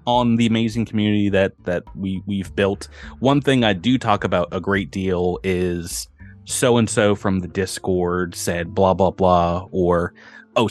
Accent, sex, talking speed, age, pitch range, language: American, male, 160 wpm, 30-49, 90-115 Hz, English